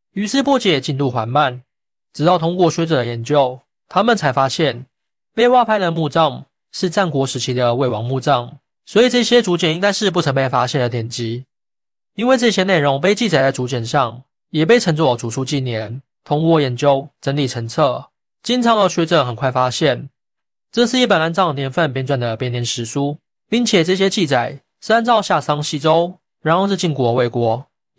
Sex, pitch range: male, 130-185 Hz